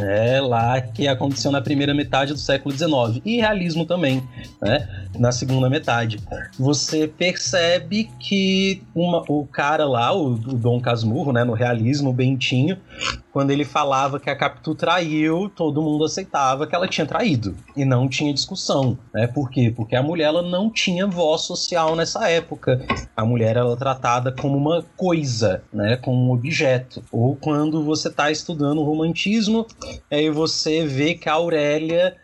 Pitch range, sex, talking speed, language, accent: 130-175 Hz, male, 160 wpm, Portuguese, Brazilian